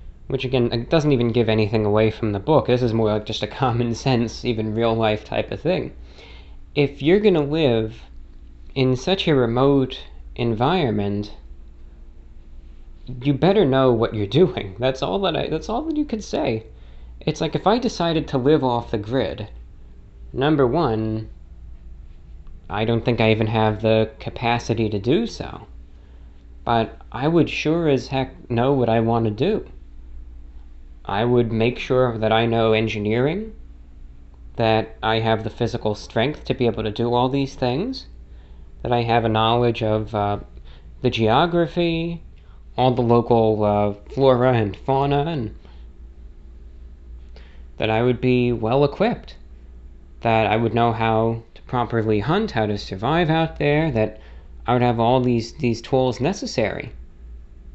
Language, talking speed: English, 155 wpm